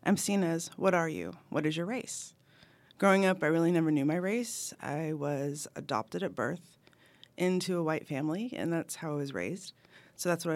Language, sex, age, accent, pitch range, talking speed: English, female, 30-49, American, 150-180 Hz, 205 wpm